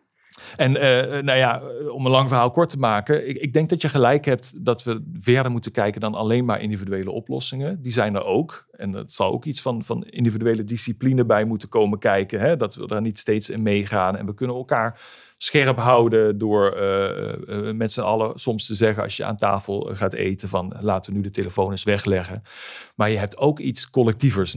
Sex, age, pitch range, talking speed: male, 40-59, 100-125 Hz, 210 wpm